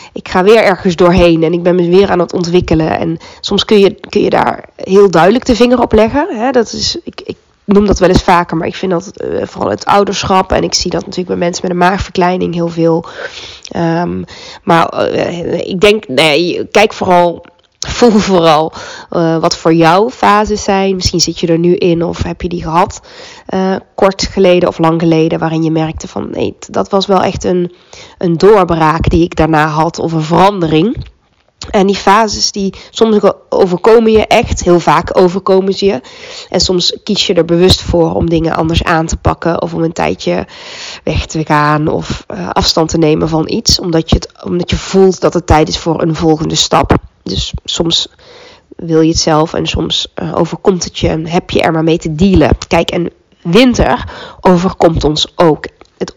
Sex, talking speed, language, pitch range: female, 200 wpm, Dutch, 165-200 Hz